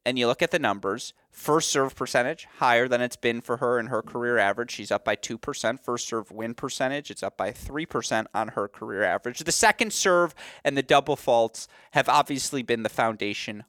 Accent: American